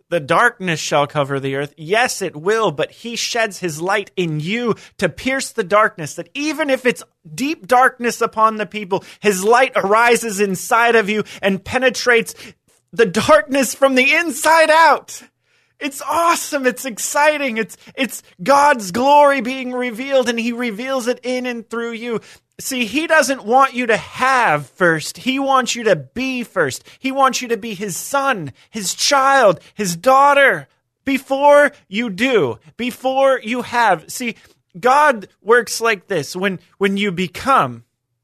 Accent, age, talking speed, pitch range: American, 30-49, 160 wpm, 180-255 Hz